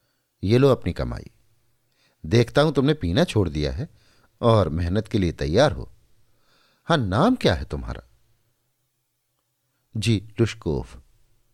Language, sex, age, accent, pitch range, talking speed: Hindi, male, 50-69, native, 100-130 Hz, 125 wpm